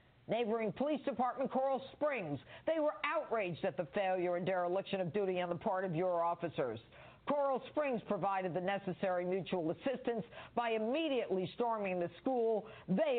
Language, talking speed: English, 155 wpm